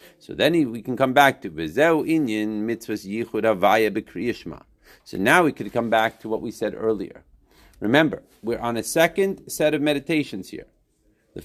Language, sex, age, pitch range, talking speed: English, male, 50-69, 105-155 Hz, 145 wpm